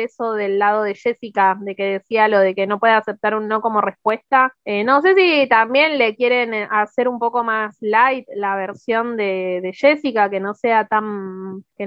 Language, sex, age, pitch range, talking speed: Spanish, female, 20-39, 210-260 Hz, 185 wpm